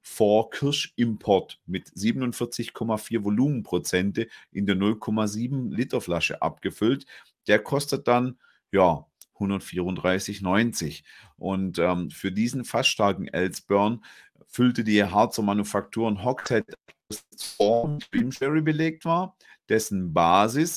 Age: 40-59